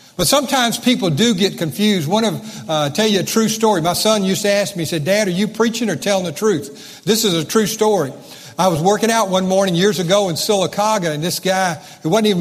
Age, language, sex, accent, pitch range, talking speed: 50-69, English, male, American, 180-225 Hz, 245 wpm